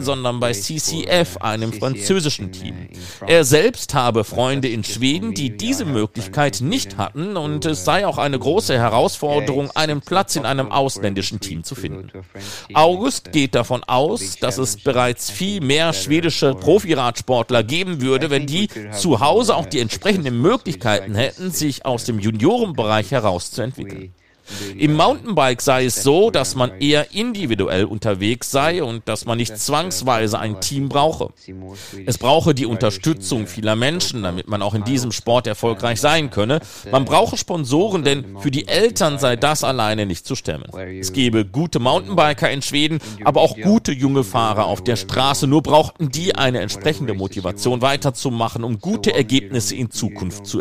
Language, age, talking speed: German, 50-69, 160 wpm